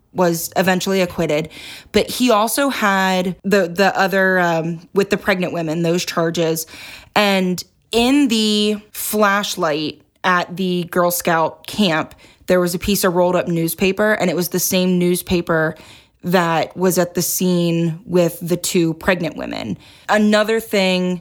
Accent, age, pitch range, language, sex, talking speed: American, 20-39, 175-200 Hz, English, female, 145 wpm